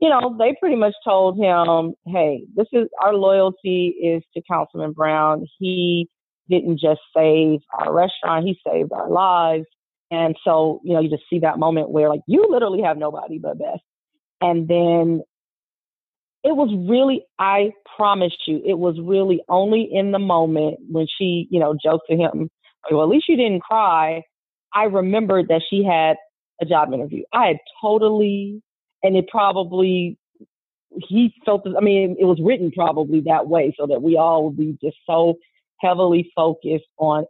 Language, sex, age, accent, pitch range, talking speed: English, female, 40-59, American, 160-200 Hz, 170 wpm